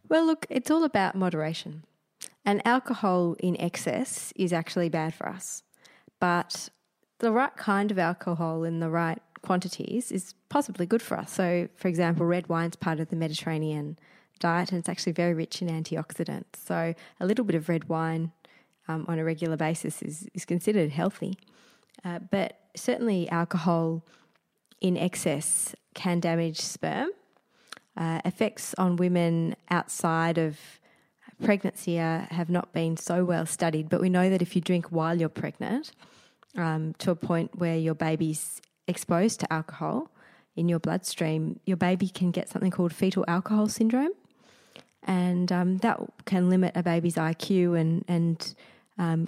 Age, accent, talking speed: 20-39, Australian, 160 wpm